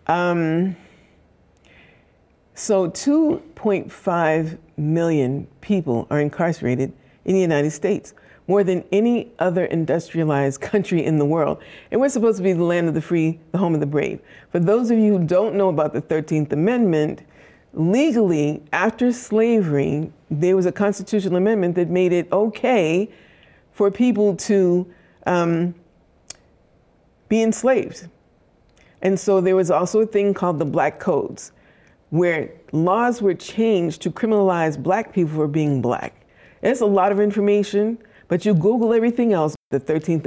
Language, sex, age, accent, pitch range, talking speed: English, female, 50-69, American, 160-210 Hz, 145 wpm